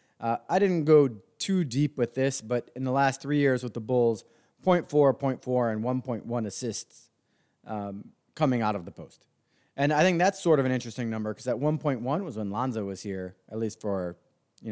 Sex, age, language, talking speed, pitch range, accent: male, 30-49, English, 200 wpm, 110-150 Hz, American